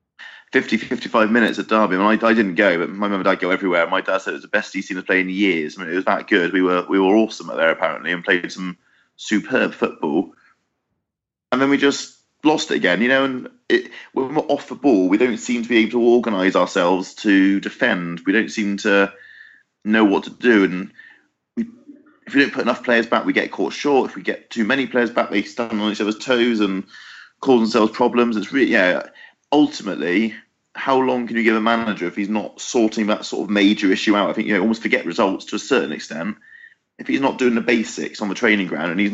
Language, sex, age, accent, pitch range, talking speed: English, male, 30-49, British, 100-125 Hz, 240 wpm